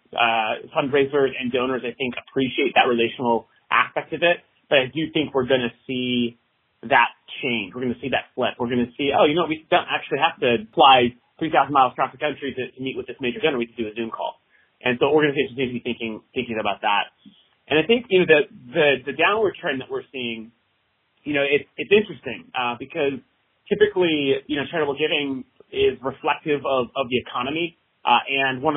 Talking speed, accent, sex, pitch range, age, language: 215 wpm, American, male, 125-150 Hz, 30-49, English